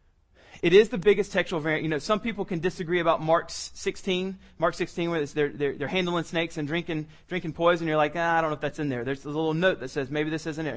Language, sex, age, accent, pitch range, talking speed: English, male, 30-49, American, 145-180 Hz, 275 wpm